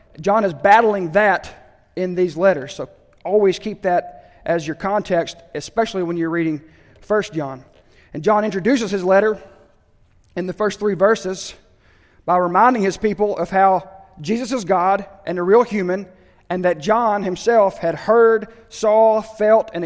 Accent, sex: American, male